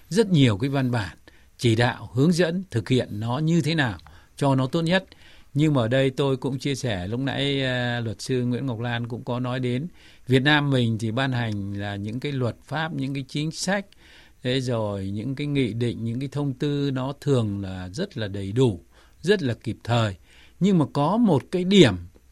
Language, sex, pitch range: Vietnamese, male, 115-150 Hz